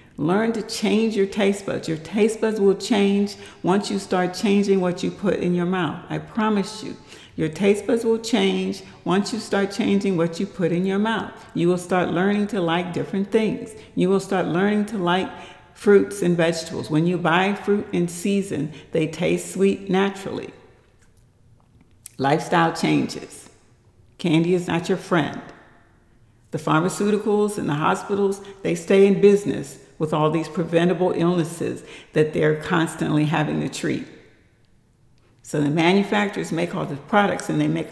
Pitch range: 160-195 Hz